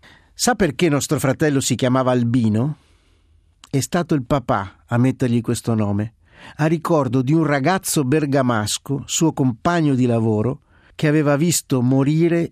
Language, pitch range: Italian, 115-145 Hz